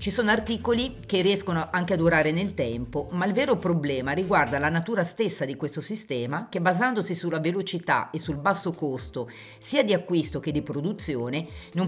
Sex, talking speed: female, 180 wpm